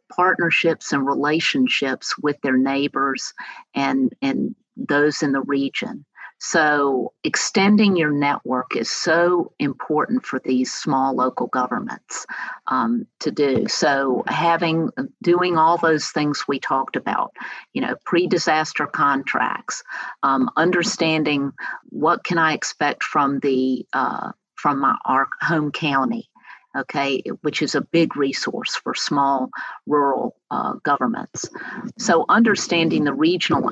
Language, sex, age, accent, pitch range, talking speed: English, female, 50-69, American, 140-175 Hz, 125 wpm